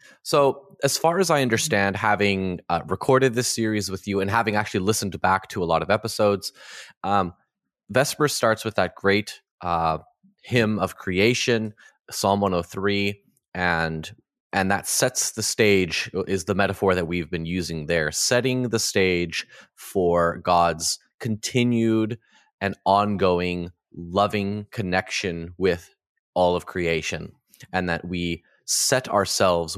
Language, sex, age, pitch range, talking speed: English, male, 20-39, 85-105 Hz, 135 wpm